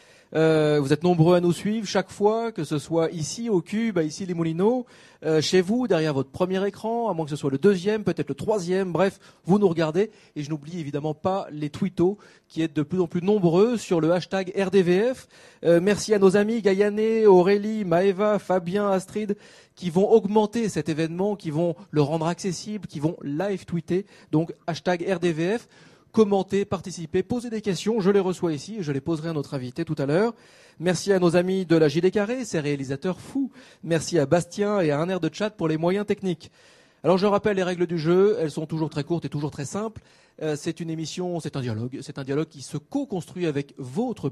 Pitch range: 160-205 Hz